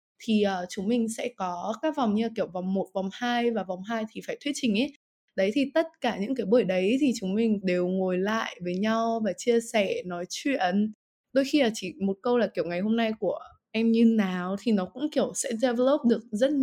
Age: 20-39